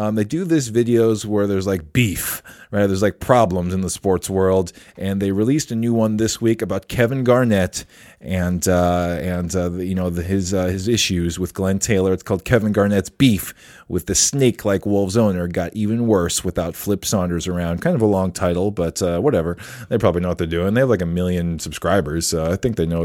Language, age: English, 30-49